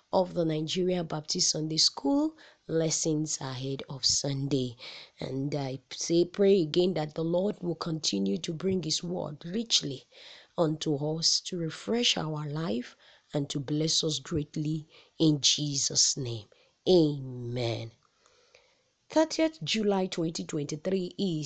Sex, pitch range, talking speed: female, 150-200 Hz, 120 wpm